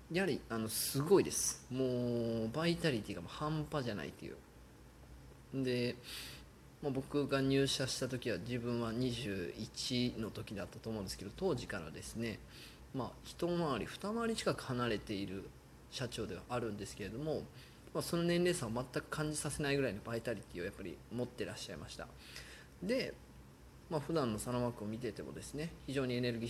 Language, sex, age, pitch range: Japanese, male, 20-39, 105-140 Hz